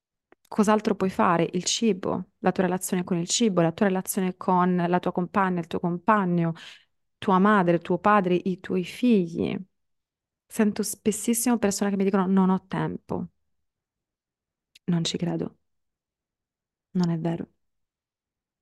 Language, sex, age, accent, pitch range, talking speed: English, female, 30-49, Italian, 170-200 Hz, 140 wpm